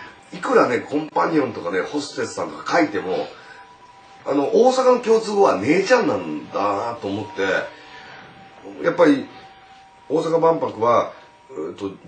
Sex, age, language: male, 40-59, Japanese